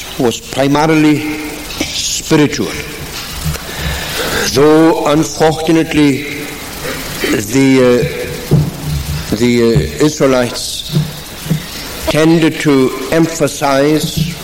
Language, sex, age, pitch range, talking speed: English, male, 60-79, 130-155 Hz, 50 wpm